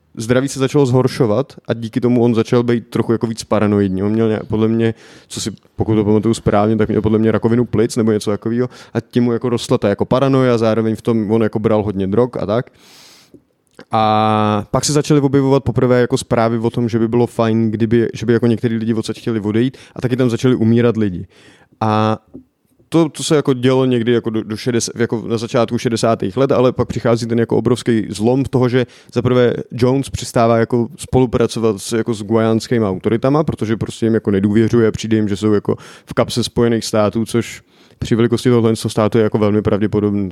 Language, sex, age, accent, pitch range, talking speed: Czech, male, 20-39, native, 110-125 Hz, 210 wpm